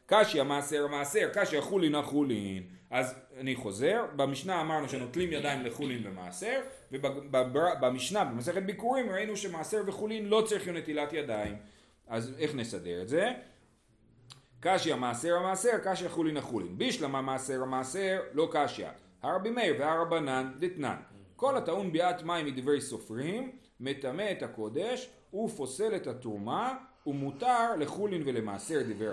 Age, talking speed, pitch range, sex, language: 40-59, 115 wpm, 130-190 Hz, male, Hebrew